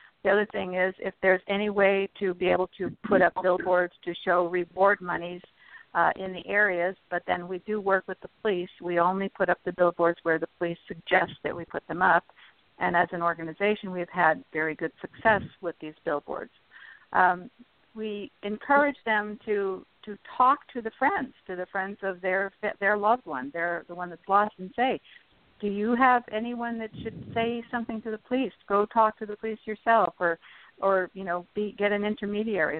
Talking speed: 200 wpm